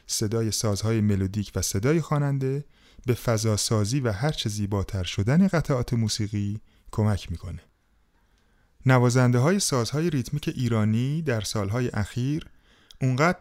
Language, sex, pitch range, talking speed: Persian, male, 105-130 Hz, 120 wpm